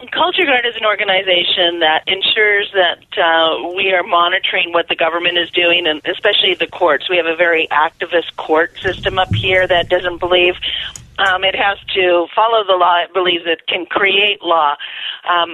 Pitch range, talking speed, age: 165-195 Hz, 180 wpm, 40-59